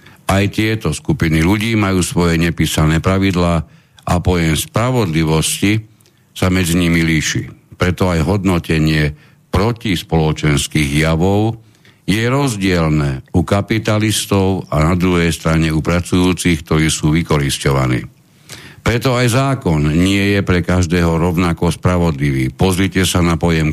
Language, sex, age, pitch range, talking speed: Slovak, male, 60-79, 80-100 Hz, 120 wpm